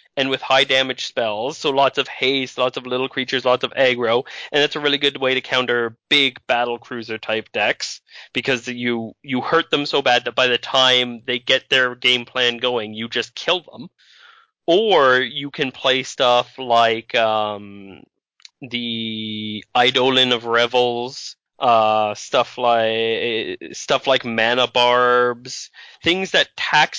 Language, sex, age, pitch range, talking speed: English, male, 20-39, 115-130 Hz, 160 wpm